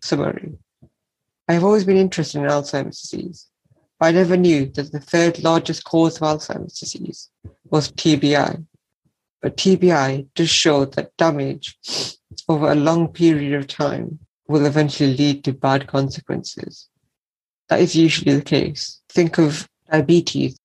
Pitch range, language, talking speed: 140-165 Hz, English, 140 wpm